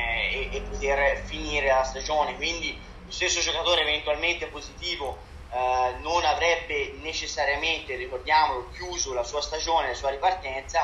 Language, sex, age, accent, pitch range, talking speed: Italian, male, 20-39, native, 145-180 Hz, 140 wpm